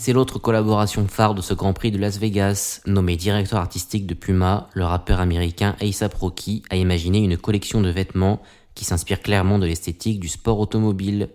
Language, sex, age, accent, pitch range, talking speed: French, male, 20-39, French, 90-105 Hz, 185 wpm